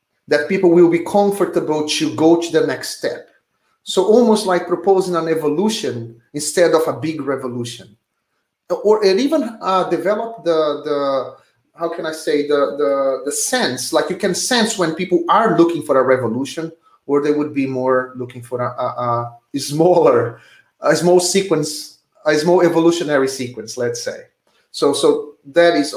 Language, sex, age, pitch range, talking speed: English, male, 30-49, 140-190 Hz, 165 wpm